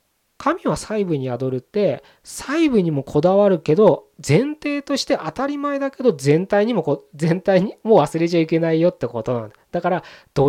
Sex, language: male, Japanese